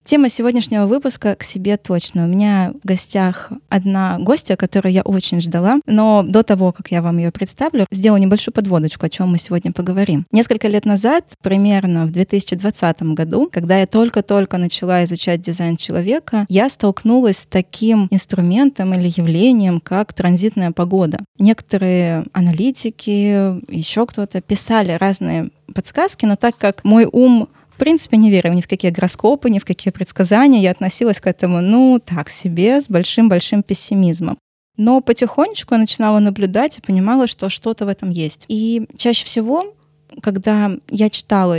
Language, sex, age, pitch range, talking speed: Russian, female, 20-39, 180-225 Hz, 155 wpm